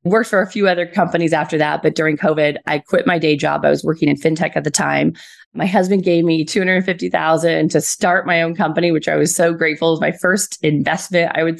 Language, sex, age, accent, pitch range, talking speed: English, female, 20-39, American, 160-195 Hz, 240 wpm